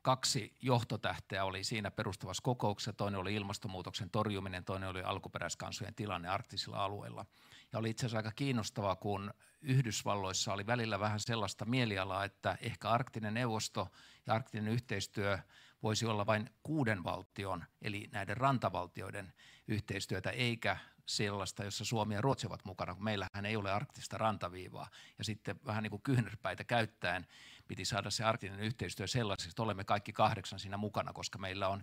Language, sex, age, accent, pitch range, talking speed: Finnish, male, 50-69, native, 100-115 Hz, 150 wpm